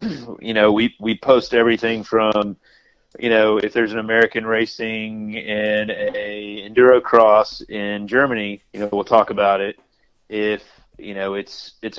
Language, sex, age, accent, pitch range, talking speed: English, male, 30-49, American, 105-115 Hz, 155 wpm